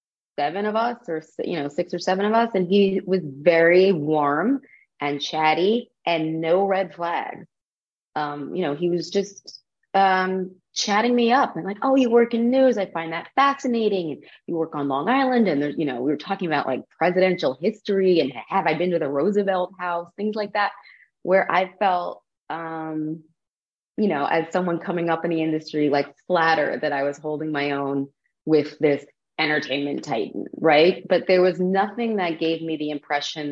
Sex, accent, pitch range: female, American, 150-195 Hz